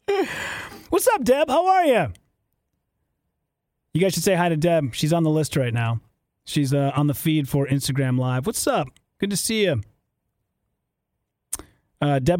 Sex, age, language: male, 30-49, English